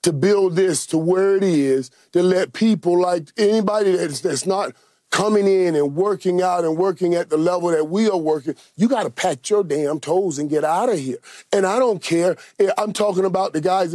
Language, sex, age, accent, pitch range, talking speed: English, male, 40-59, American, 170-205 Hz, 215 wpm